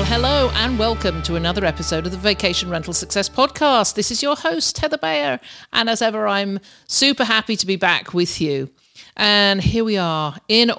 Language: English